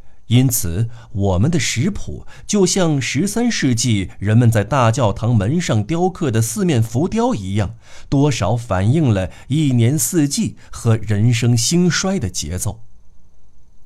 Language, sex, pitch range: Chinese, male, 105-150 Hz